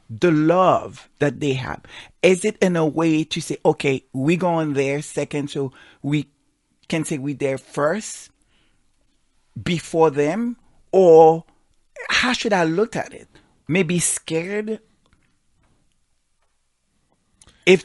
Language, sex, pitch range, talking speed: English, male, 135-165 Hz, 125 wpm